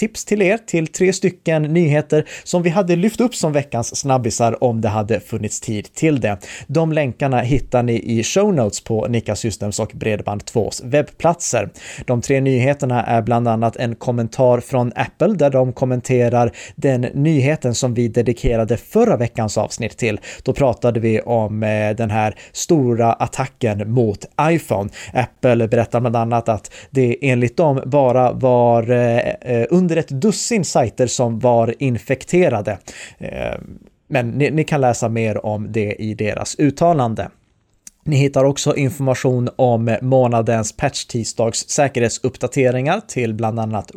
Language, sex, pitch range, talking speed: Swedish, male, 115-145 Hz, 150 wpm